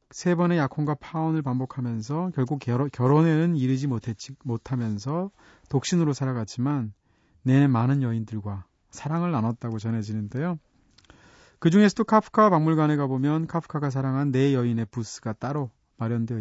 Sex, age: male, 30-49